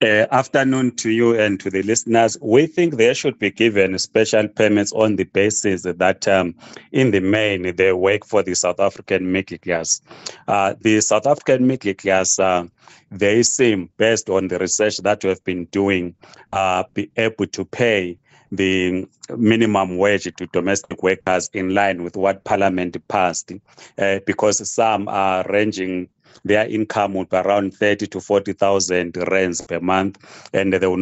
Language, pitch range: English, 95-110 Hz